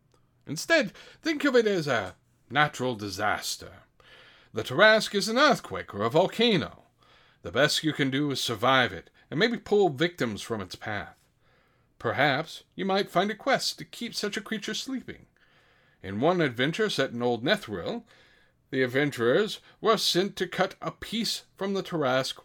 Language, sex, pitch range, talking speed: English, male, 120-180 Hz, 165 wpm